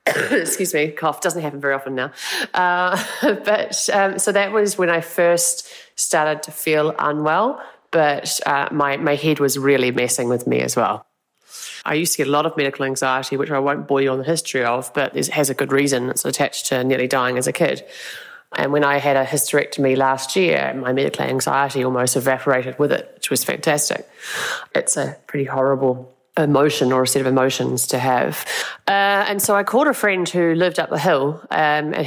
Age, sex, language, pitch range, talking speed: 30-49, female, English, 130-165 Hz, 205 wpm